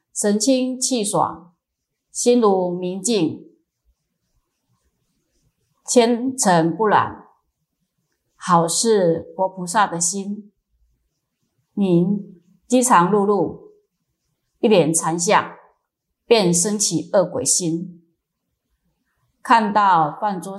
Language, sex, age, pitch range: Chinese, female, 30-49, 170-215 Hz